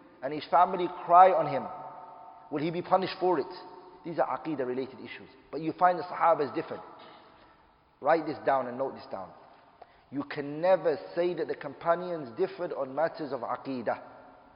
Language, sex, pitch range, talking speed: English, male, 160-205 Hz, 175 wpm